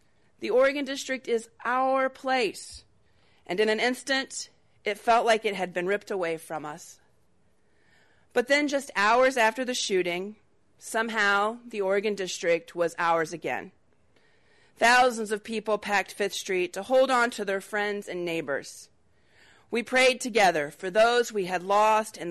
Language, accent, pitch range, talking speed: English, American, 175-230 Hz, 155 wpm